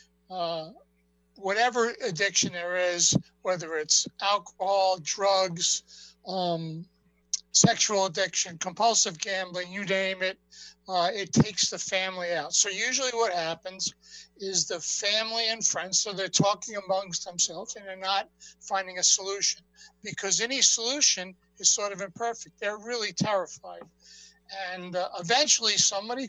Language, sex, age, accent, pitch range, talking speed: English, male, 60-79, American, 180-210 Hz, 130 wpm